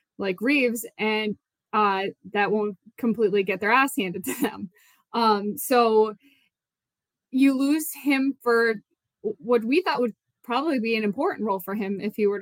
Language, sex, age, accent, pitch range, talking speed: English, female, 20-39, American, 205-235 Hz, 160 wpm